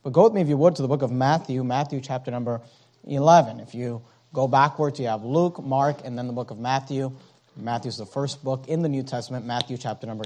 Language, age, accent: English, 40-59, American